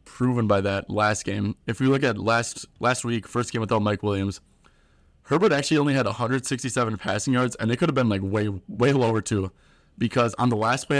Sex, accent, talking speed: male, American, 215 wpm